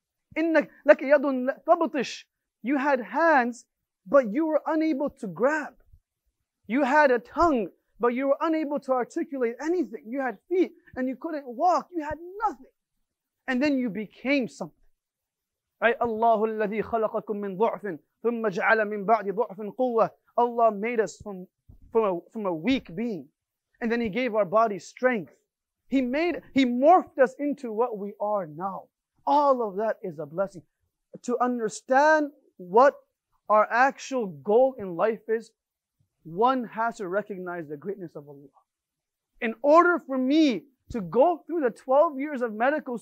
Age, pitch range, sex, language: 30-49, 215-290 Hz, male, English